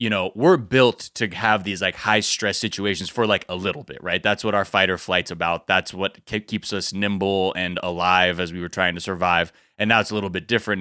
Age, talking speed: 20-39, 245 wpm